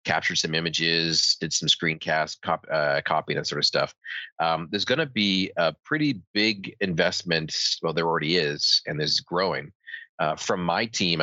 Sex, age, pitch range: male, 30-49, 80-90 Hz